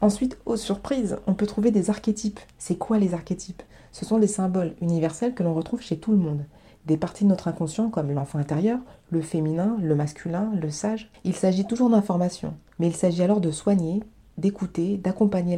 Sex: female